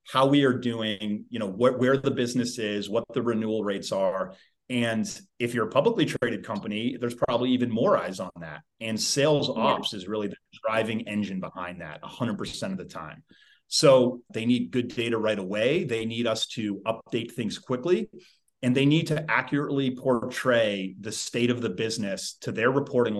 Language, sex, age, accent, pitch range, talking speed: English, male, 30-49, American, 110-130 Hz, 185 wpm